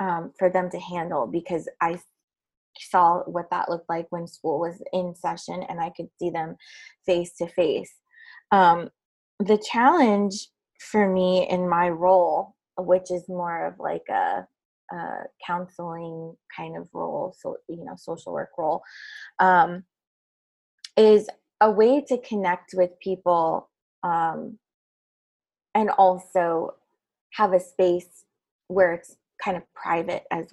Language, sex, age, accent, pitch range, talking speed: English, female, 20-39, American, 170-210 Hz, 140 wpm